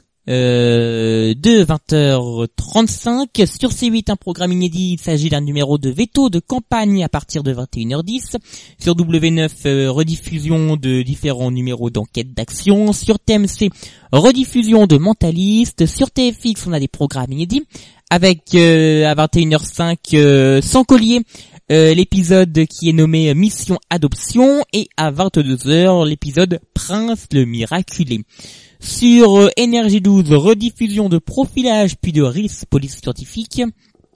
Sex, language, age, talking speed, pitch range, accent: male, French, 20-39, 135 wpm, 145-200 Hz, French